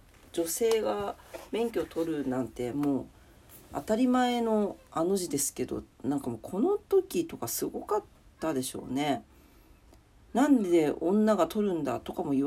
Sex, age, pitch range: female, 40-59, 155-240 Hz